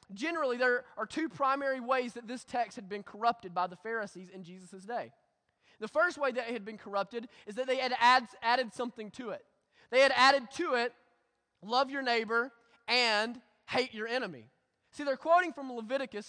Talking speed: 190 wpm